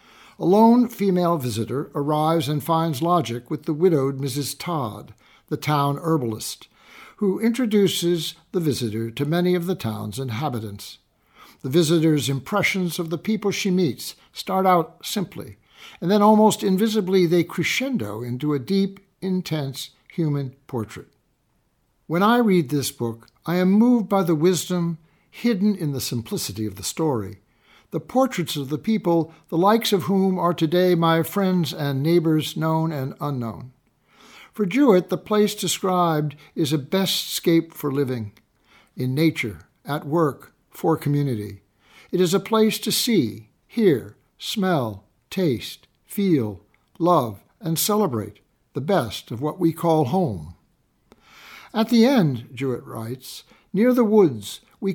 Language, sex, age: English, male, 60-79